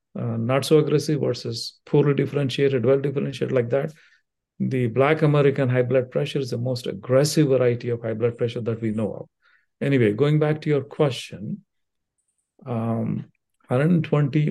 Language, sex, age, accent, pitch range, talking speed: English, male, 50-69, Indian, 120-150 Hz, 155 wpm